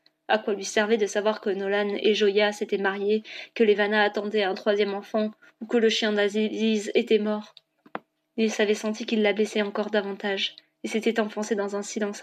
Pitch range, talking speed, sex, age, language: 205-245 Hz, 190 wpm, female, 20-39, French